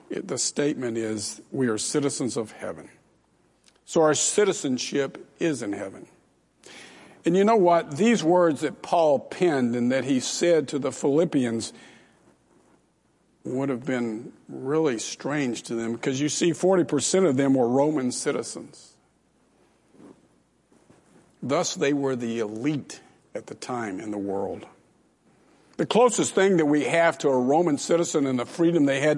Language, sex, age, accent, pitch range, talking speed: English, male, 50-69, American, 120-155 Hz, 150 wpm